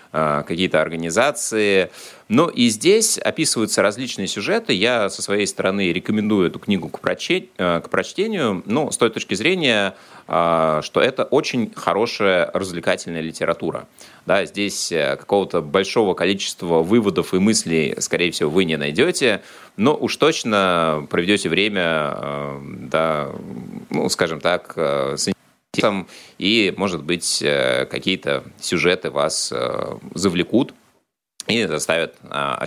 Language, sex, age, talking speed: Russian, male, 30-49, 115 wpm